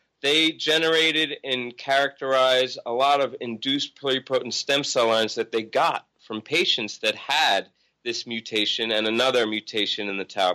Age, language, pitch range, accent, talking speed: 30-49, English, 115-155 Hz, American, 155 wpm